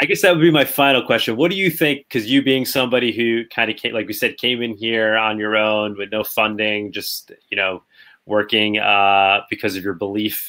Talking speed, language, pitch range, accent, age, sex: 230 wpm, English, 100-120 Hz, American, 30-49, male